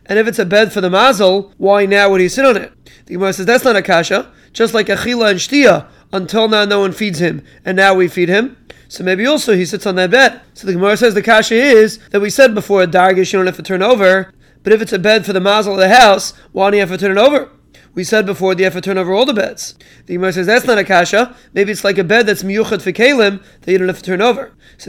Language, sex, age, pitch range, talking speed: English, male, 20-39, 190-220 Hz, 285 wpm